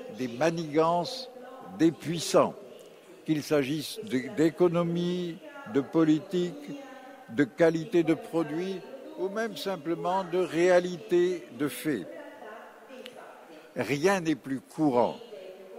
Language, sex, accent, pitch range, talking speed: Italian, male, French, 150-210 Hz, 90 wpm